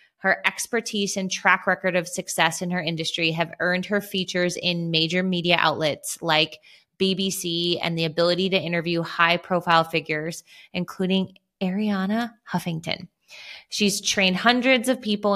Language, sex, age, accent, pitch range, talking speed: English, female, 20-39, American, 165-200 Hz, 135 wpm